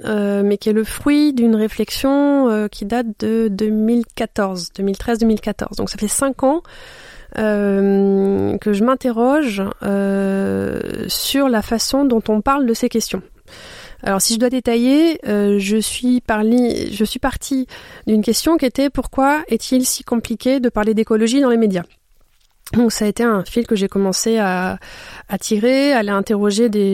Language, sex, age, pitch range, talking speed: French, female, 30-49, 210-260 Hz, 165 wpm